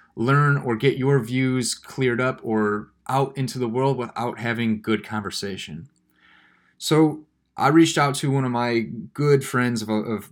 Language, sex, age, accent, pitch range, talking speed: English, male, 20-39, American, 110-130 Hz, 165 wpm